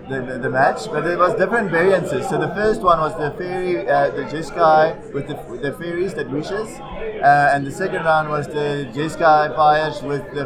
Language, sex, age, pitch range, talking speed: English, male, 30-49, 140-180 Hz, 210 wpm